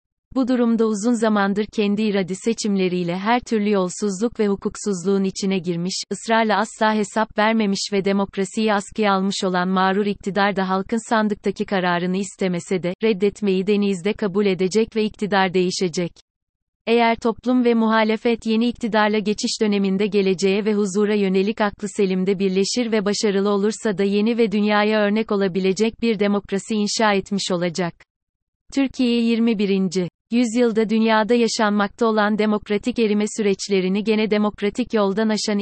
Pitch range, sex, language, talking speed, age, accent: 195-220 Hz, female, Turkish, 135 wpm, 30-49, native